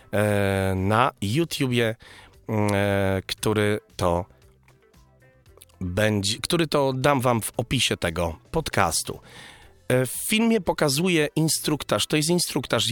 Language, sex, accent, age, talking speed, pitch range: Polish, male, native, 30-49, 95 wpm, 105-135 Hz